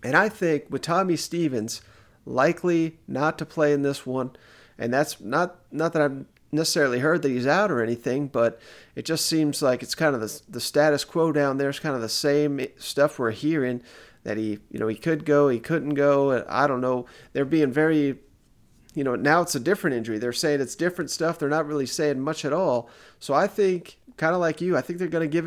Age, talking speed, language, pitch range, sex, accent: 40-59, 225 wpm, English, 125-160 Hz, male, American